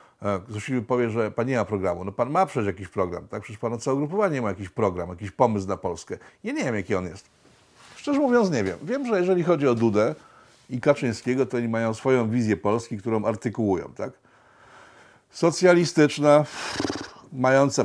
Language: Polish